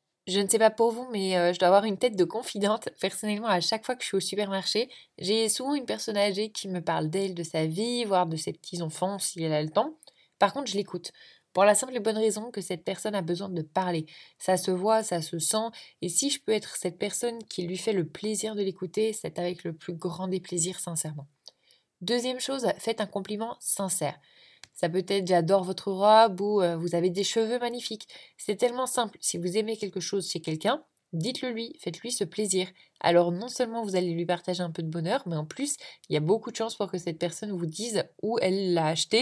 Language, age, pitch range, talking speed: French, 20-39, 175-220 Hz, 235 wpm